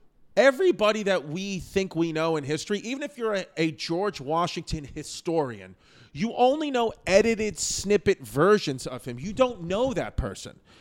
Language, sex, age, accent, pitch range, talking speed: English, male, 30-49, American, 155-200 Hz, 160 wpm